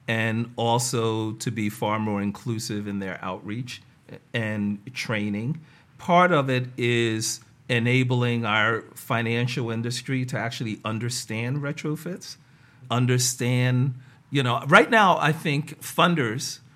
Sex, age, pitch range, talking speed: male, 50-69, 120-155 Hz, 115 wpm